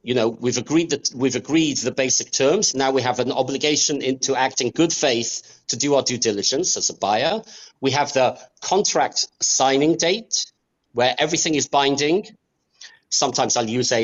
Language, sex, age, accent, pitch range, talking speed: English, male, 40-59, British, 130-170 Hz, 175 wpm